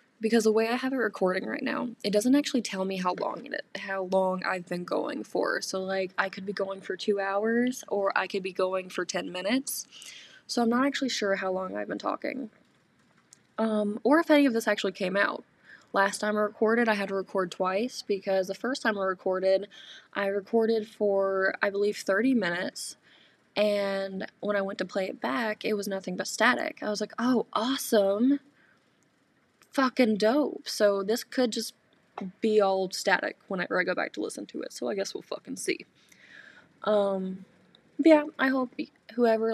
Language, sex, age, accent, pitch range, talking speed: English, female, 20-39, American, 195-240 Hz, 195 wpm